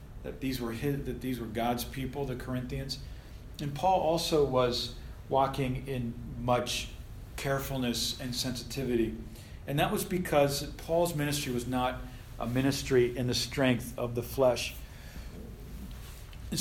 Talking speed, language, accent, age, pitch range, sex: 135 wpm, English, American, 40-59, 120-145 Hz, male